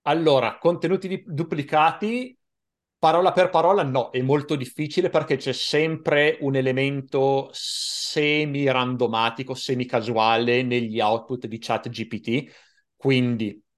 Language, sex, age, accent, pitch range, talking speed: Italian, male, 30-49, native, 120-145 Hz, 105 wpm